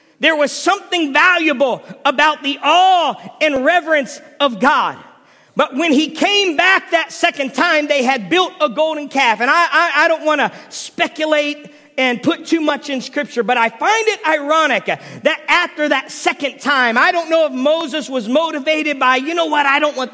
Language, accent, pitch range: English, American, 270-330 Hz